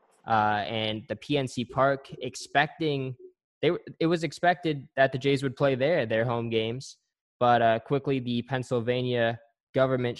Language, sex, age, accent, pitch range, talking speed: English, male, 10-29, American, 115-140 Hz, 145 wpm